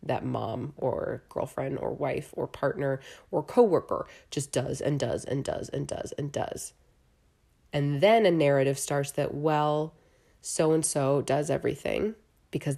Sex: female